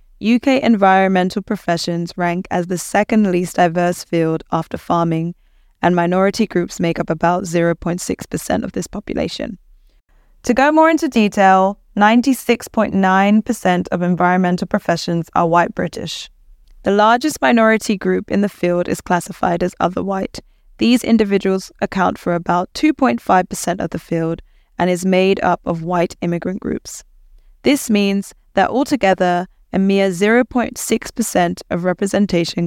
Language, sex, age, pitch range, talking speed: English, female, 20-39, 175-210 Hz, 130 wpm